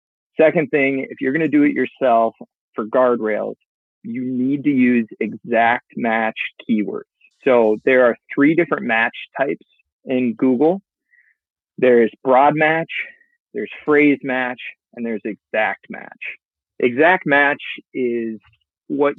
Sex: male